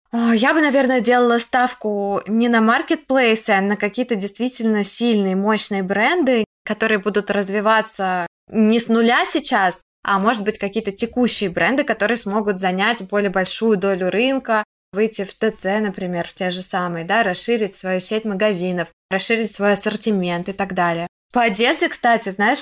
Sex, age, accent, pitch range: female, 20-39, native, 190-225 Hz